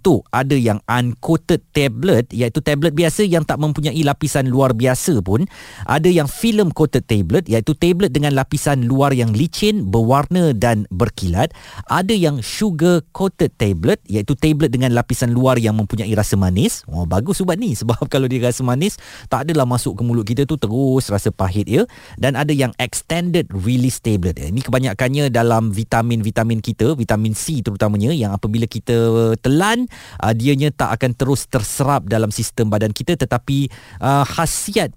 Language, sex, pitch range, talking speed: Malay, male, 110-150 Hz, 165 wpm